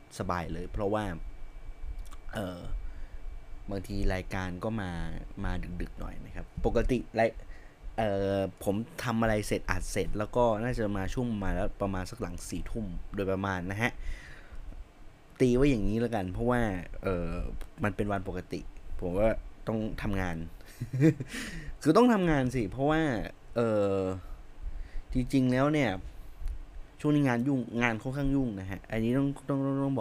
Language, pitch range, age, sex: Thai, 90-115 Hz, 20-39, male